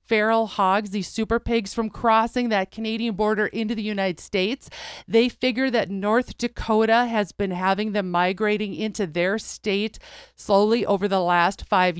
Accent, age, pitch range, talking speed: American, 40-59, 195-240 Hz, 160 wpm